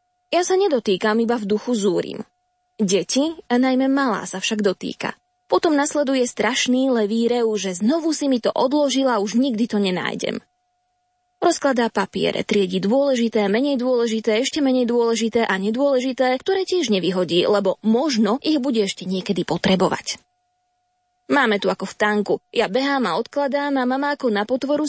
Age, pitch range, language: 20-39, 210-280 Hz, Slovak